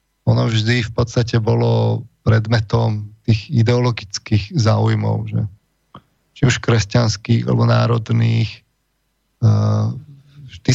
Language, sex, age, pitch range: Slovak, male, 30-49, 110-120 Hz